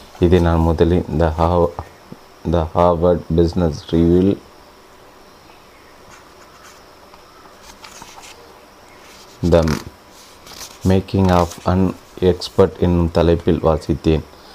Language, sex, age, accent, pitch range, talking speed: Tamil, male, 30-49, native, 80-90 Hz, 70 wpm